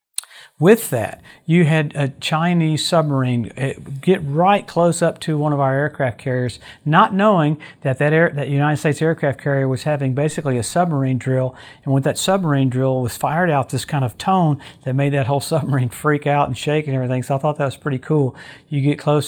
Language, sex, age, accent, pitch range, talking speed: English, male, 50-69, American, 135-160 Hz, 205 wpm